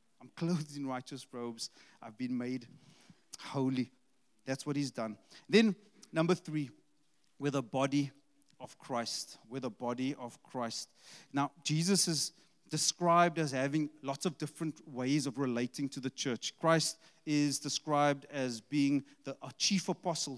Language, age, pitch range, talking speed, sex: English, 30-49, 145-180 Hz, 145 wpm, male